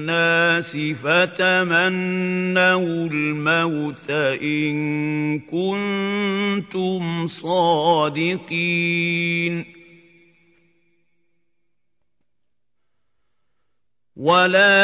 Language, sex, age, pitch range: Arabic, male, 50-69, 165-190 Hz